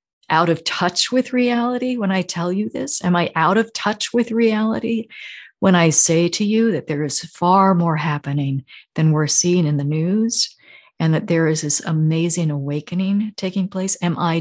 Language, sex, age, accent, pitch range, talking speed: English, female, 40-59, American, 165-210 Hz, 185 wpm